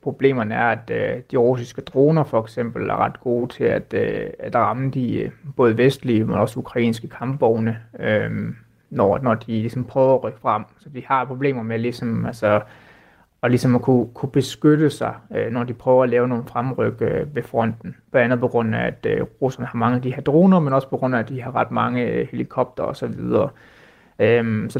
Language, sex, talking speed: Danish, male, 210 wpm